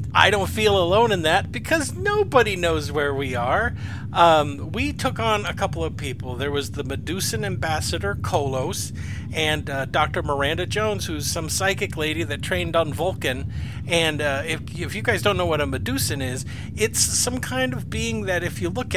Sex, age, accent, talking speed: male, 50-69, American, 190 wpm